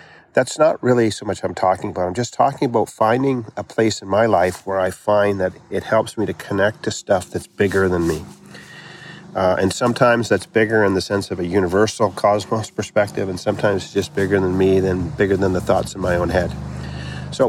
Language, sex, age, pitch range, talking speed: English, male, 50-69, 95-120 Hz, 215 wpm